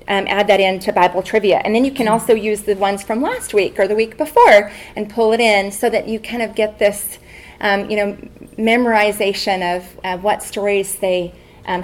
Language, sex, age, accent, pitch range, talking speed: English, female, 30-49, American, 195-235 Hz, 215 wpm